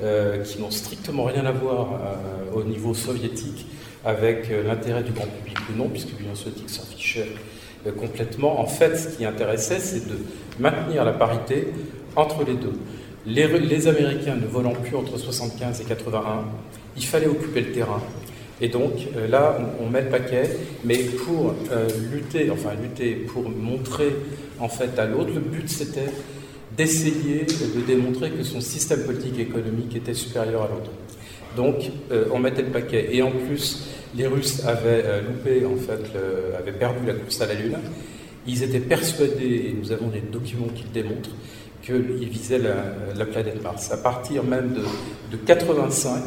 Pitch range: 115-135 Hz